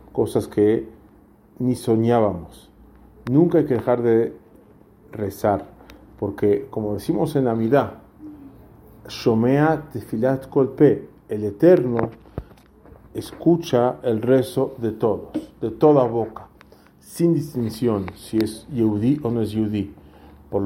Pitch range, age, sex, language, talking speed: 105-125 Hz, 40-59, male, English, 105 wpm